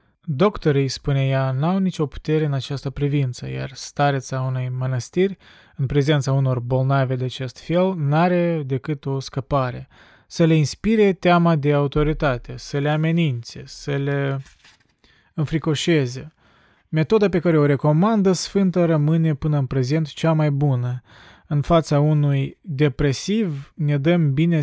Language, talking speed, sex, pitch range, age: Romanian, 135 wpm, male, 135-160 Hz, 20-39